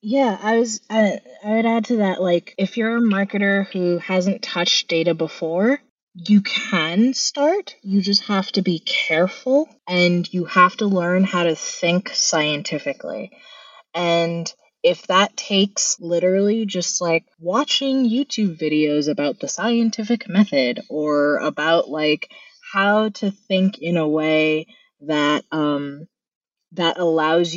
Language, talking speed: English, 140 wpm